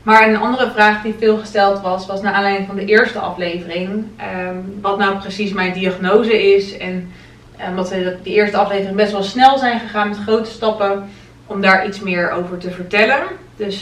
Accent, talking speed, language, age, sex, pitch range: Dutch, 195 wpm, Dutch, 20-39, female, 185-210 Hz